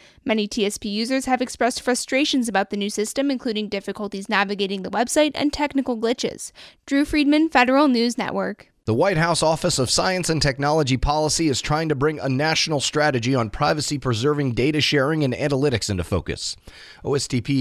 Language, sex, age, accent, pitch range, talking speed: English, male, 30-49, American, 110-160 Hz, 165 wpm